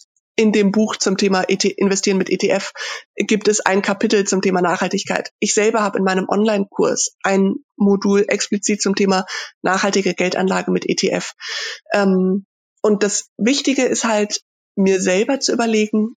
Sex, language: female, German